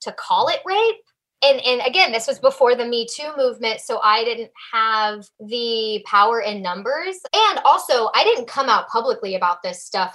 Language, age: English, 10-29